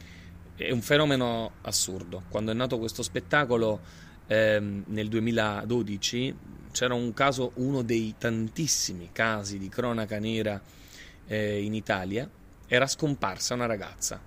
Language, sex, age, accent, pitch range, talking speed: Italian, male, 30-49, native, 95-125 Hz, 120 wpm